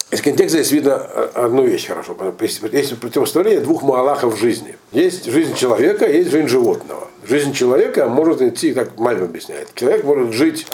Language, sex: Russian, male